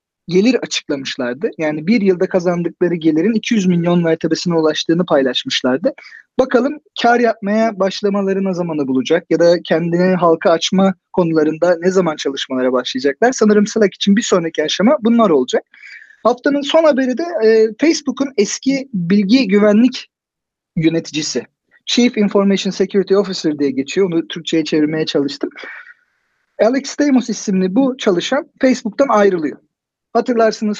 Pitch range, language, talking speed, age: 175-235 Hz, Turkish, 125 wpm, 40-59